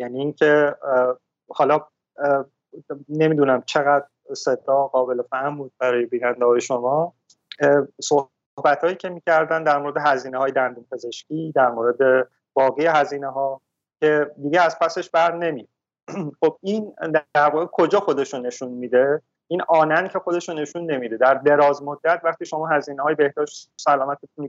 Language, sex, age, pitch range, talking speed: Persian, male, 30-49, 130-160 Hz, 145 wpm